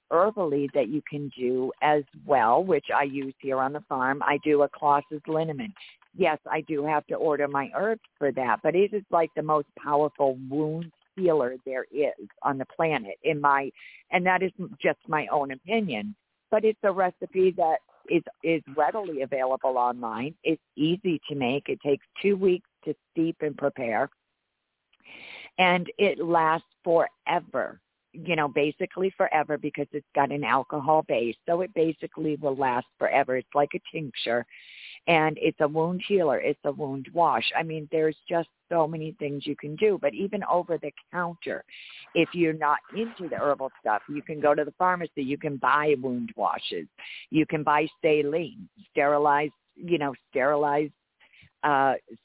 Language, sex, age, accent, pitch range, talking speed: English, female, 50-69, American, 145-175 Hz, 170 wpm